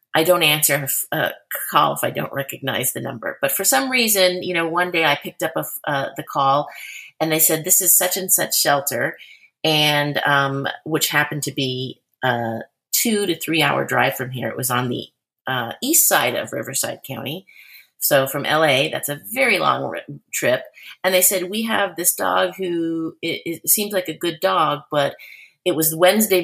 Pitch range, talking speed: 145-190 Hz, 190 wpm